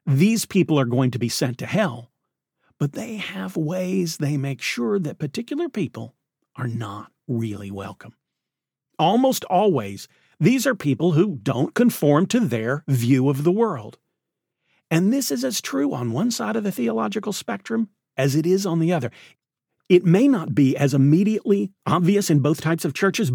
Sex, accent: male, American